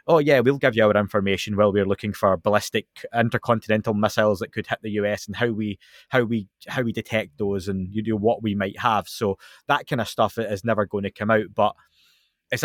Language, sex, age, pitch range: English, male, 20-39, 105-120 Hz